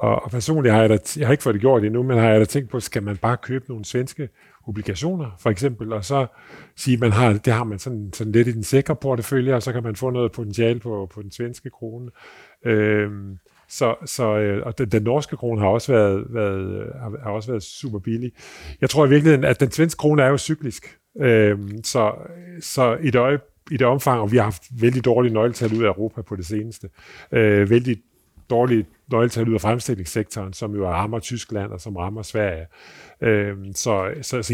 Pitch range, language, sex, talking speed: 105-125 Hz, Danish, male, 215 wpm